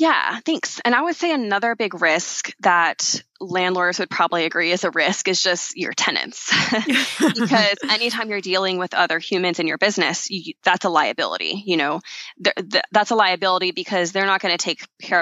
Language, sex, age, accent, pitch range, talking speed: English, female, 20-39, American, 170-210 Hz, 180 wpm